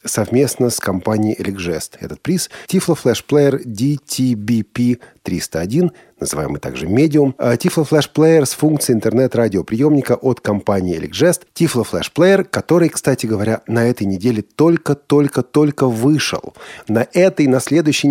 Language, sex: Russian, male